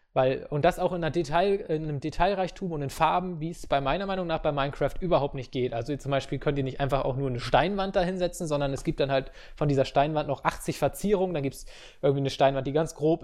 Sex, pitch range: male, 135-165 Hz